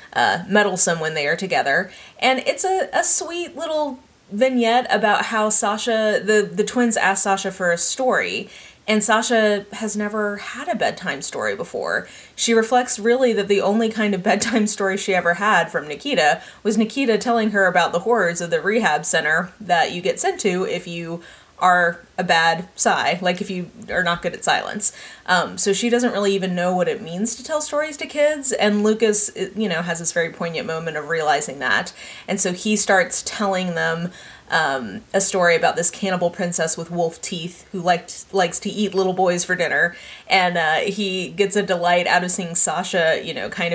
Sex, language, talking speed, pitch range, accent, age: female, English, 195 wpm, 175-225 Hz, American, 30-49